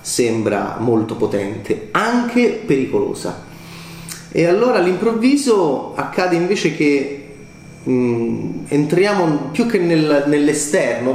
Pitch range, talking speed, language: 120-160 Hz, 90 wpm, Italian